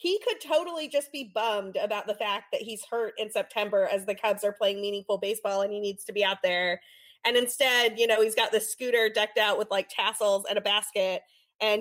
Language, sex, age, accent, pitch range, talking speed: English, female, 20-39, American, 195-245 Hz, 230 wpm